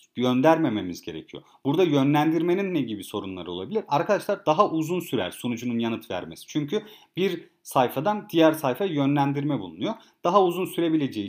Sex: male